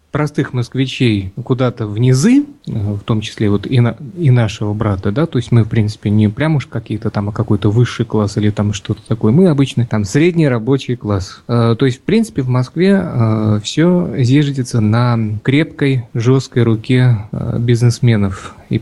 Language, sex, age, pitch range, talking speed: Russian, male, 30-49, 110-140 Hz, 165 wpm